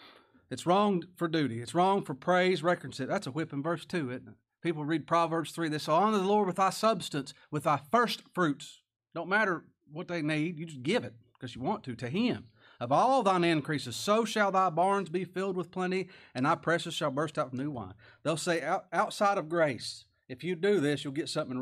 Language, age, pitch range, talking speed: English, 40-59, 120-180 Hz, 225 wpm